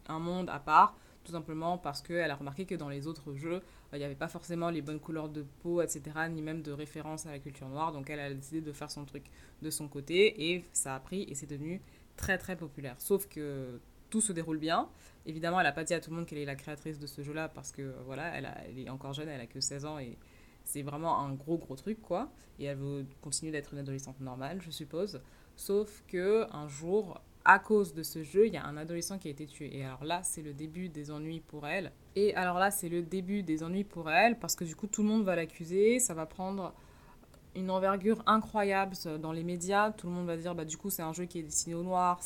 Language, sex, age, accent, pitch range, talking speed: French, female, 20-39, French, 145-180 Hz, 260 wpm